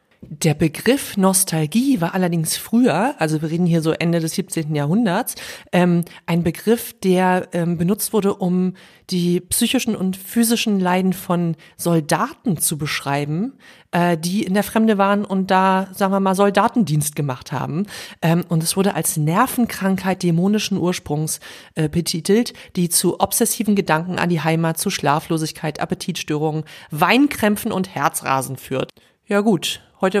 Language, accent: German, German